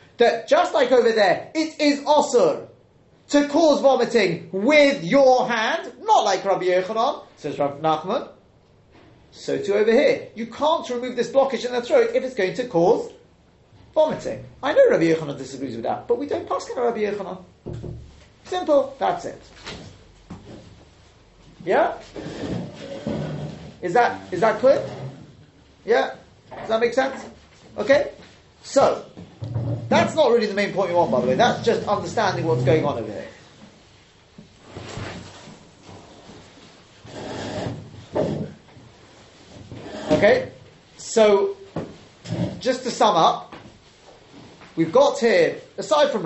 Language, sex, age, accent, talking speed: English, male, 30-49, British, 130 wpm